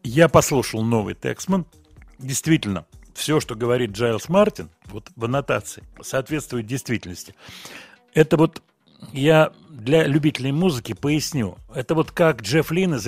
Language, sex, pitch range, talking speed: Russian, male, 115-155 Hz, 130 wpm